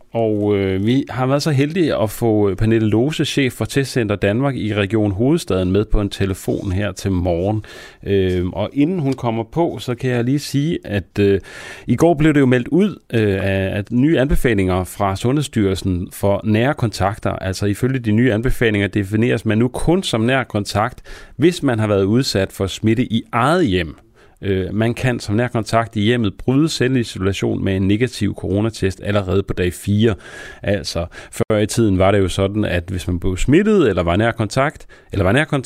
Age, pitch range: 40-59, 95-120 Hz